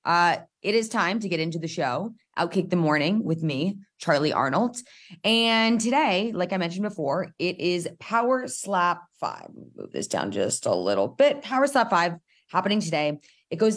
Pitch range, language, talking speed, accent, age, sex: 155-200 Hz, English, 175 wpm, American, 20-39, female